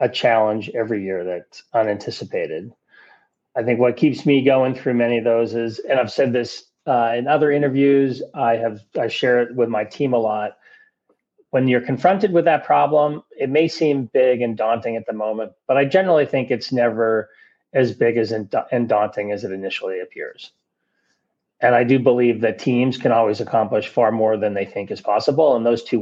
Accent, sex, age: American, male, 30-49